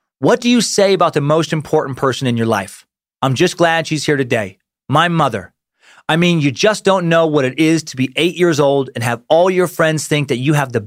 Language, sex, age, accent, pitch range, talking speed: English, male, 30-49, American, 140-185 Hz, 245 wpm